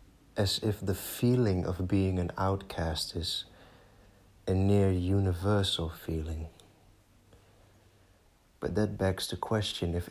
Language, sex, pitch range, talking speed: English, male, 85-95 Hz, 115 wpm